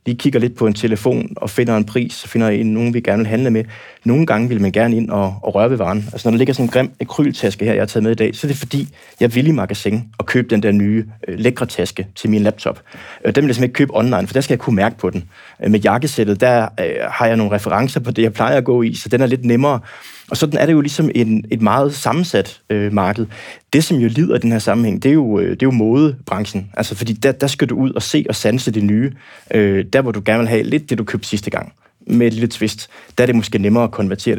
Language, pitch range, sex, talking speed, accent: Danish, 105-130 Hz, male, 280 wpm, native